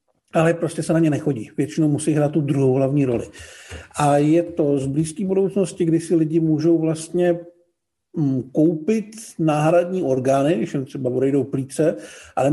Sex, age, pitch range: male, 50-69, 135-170 Hz